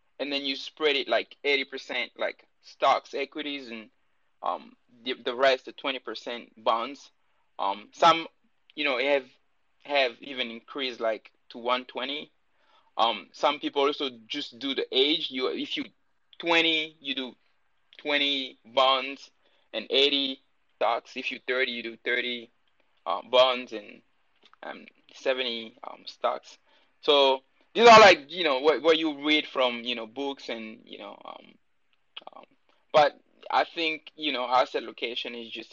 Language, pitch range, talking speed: English, 120-145 Hz, 150 wpm